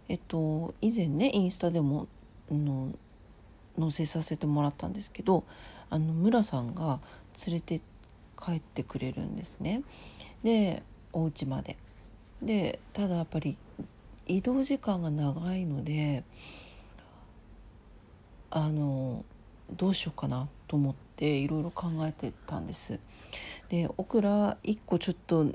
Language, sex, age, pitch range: Japanese, female, 40-59, 120-200 Hz